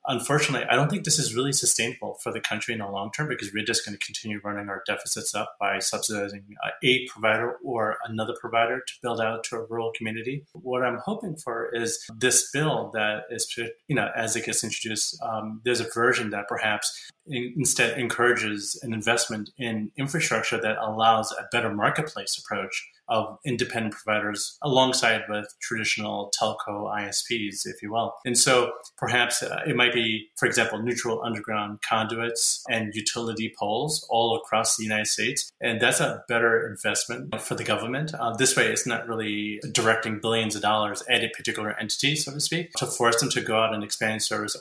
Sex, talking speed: male, 185 wpm